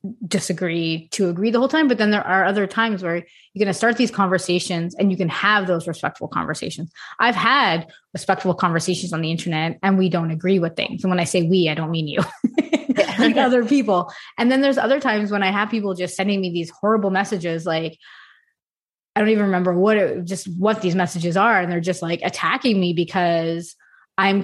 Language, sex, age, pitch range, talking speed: English, female, 20-39, 175-210 Hz, 210 wpm